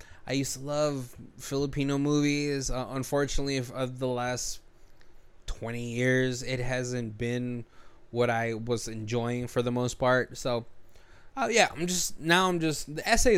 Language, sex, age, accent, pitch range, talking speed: English, male, 20-39, American, 120-155 Hz, 150 wpm